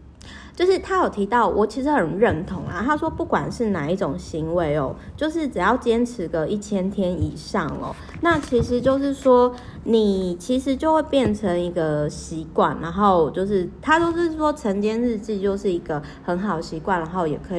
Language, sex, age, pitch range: Chinese, female, 30-49, 175-235 Hz